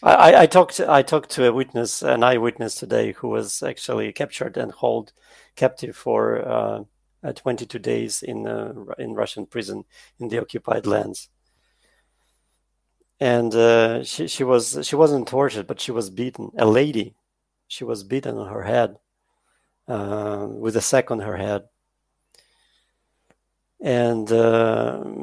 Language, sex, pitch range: English, male, 115-145 Hz